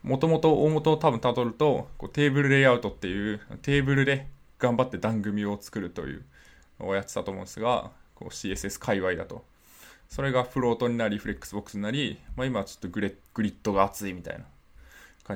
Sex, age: male, 20-39